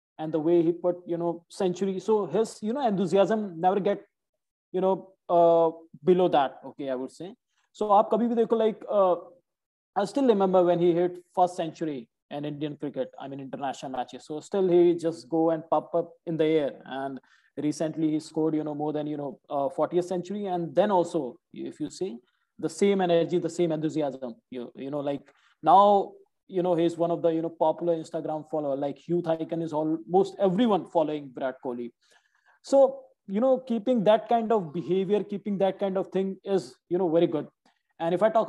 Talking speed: 195 wpm